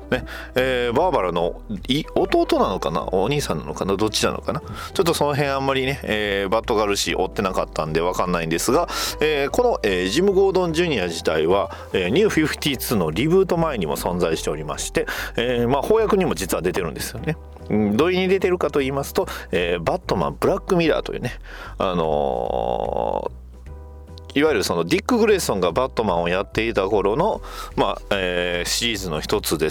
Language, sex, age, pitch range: Japanese, male, 40-59, 85-145 Hz